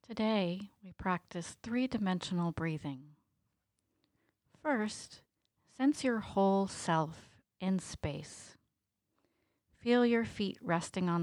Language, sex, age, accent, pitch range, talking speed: English, female, 40-59, American, 160-210 Hz, 90 wpm